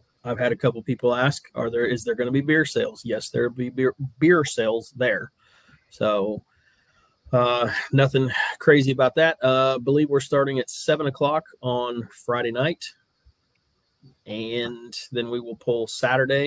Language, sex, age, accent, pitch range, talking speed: English, male, 30-49, American, 115-130 Hz, 160 wpm